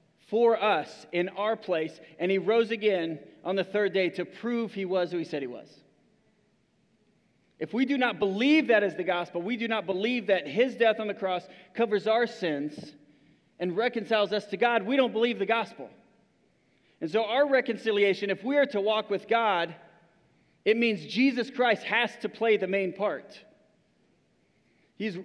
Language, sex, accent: English, male, American